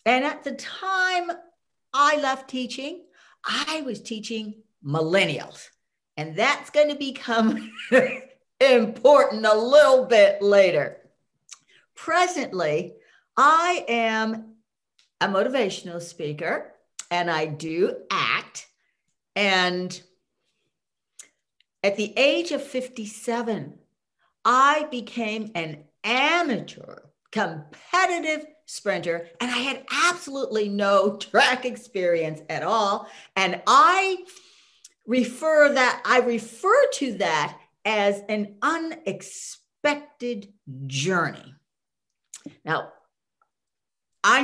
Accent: American